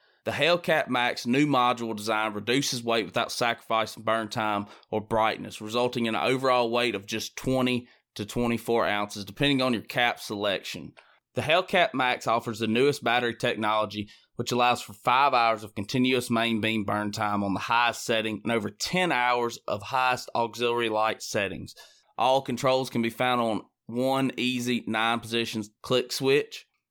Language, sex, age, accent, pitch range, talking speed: English, male, 20-39, American, 115-130 Hz, 165 wpm